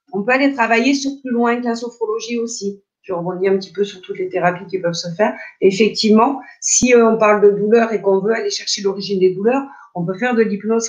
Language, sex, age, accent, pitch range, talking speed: French, female, 50-69, French, 200-250 Hz, 230 wpm